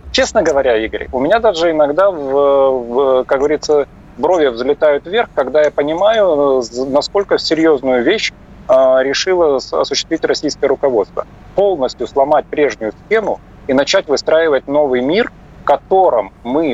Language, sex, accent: Russian, male, native